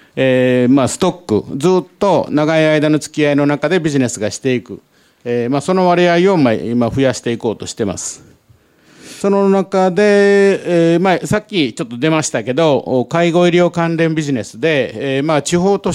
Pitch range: 130-175 Hz